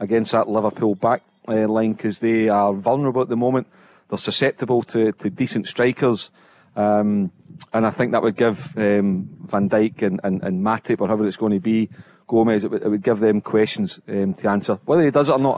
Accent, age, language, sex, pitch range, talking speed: British, 30-49, English, male, 110-125 Hz, 210 wpm